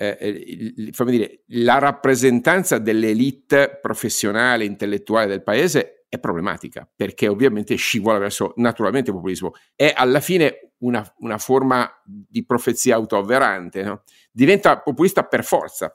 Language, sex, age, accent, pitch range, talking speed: Italian, male, 50-69, native, 105-130 Hz, 125 wpm